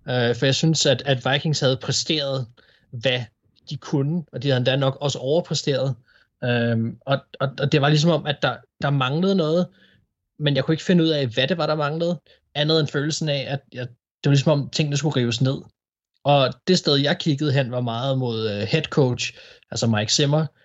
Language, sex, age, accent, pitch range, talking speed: Danish, male, 20-39, native, 130-155 Hz, 190 wpm